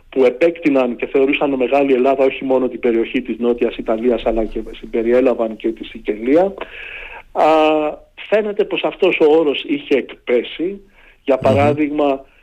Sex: male